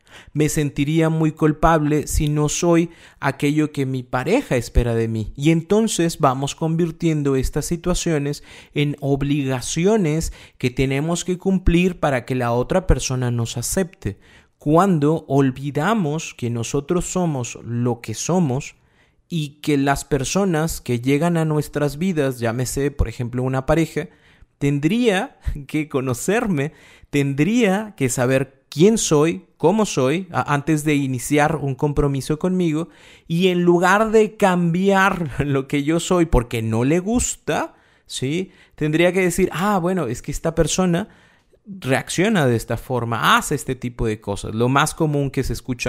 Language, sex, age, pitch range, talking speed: Spanish, male, 30-49, 130-170 Hz, 145 wpm